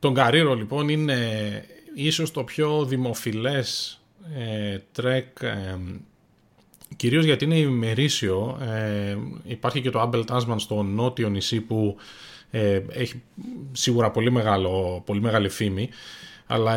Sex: male